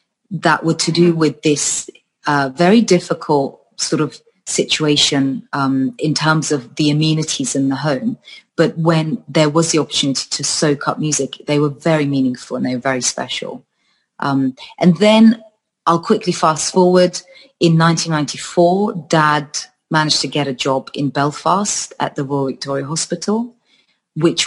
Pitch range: 135-170 Hz